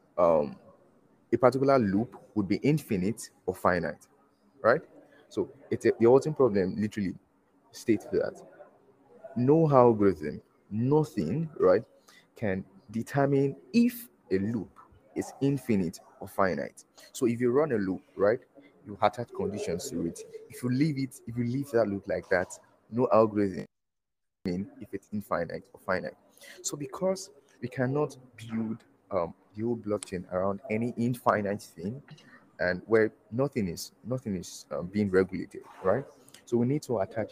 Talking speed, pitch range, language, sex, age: 145 wpm, 100-130 Hz, English, male, 20-39